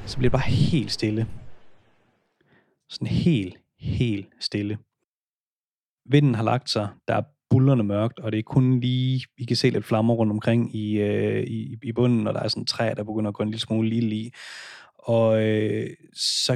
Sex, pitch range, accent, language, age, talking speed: male, 110-135 Hz, native, Danish, 30-49, 185 wpm